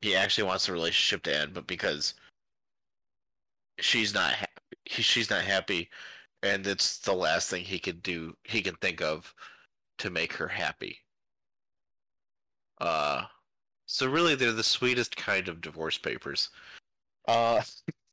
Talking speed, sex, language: 140 wpm, male, English